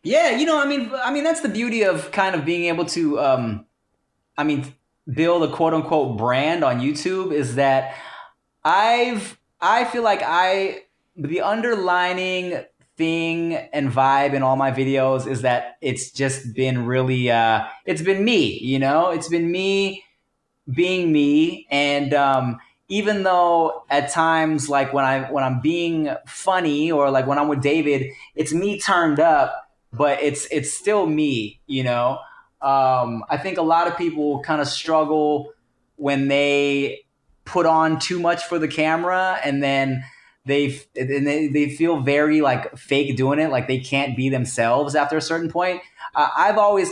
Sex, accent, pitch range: male, American, 135-170 Hz